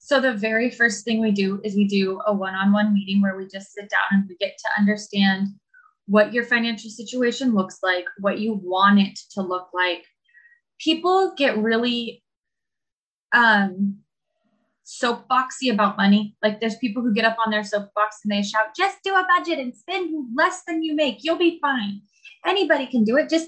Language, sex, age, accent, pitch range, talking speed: English, female, 20-39, American, 205-275 Hz, 185 wpm